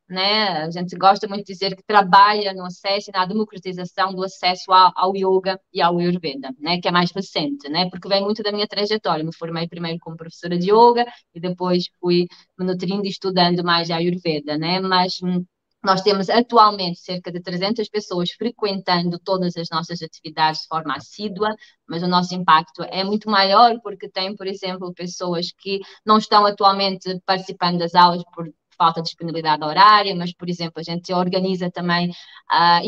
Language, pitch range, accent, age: Portuguese, 175-210 Hz, Brazilian, 20-39